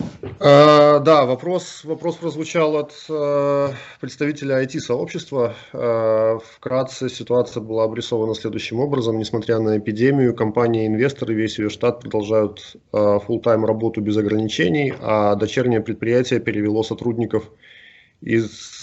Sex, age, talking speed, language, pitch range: male, 20-39, 110 wpm, English, 110-130 Hz